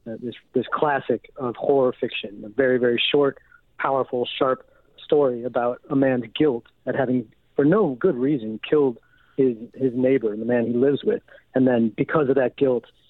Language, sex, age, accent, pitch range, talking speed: English, male, 40-59, American, 125-155 Hz, 180 wpm